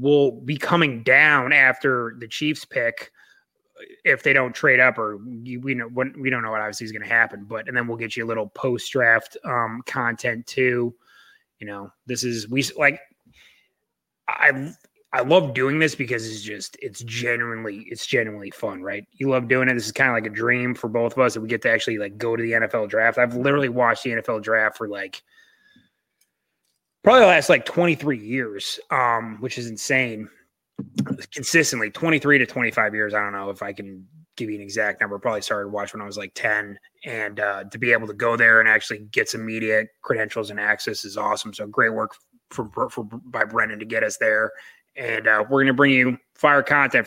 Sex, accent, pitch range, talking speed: male, American, 110-135 Hz, 210 wpm